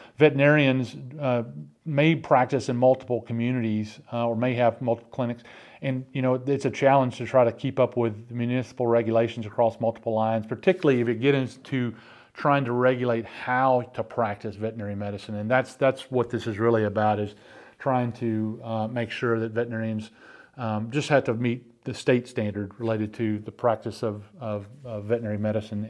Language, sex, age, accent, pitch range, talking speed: English, male, 40-59, American, 110-130 Hz, 175 wpm